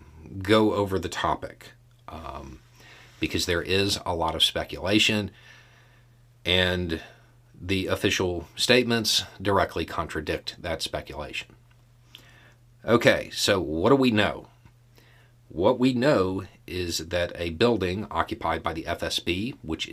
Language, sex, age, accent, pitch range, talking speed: English, male, 40-59, American, 85-120 Hz, 115 wpm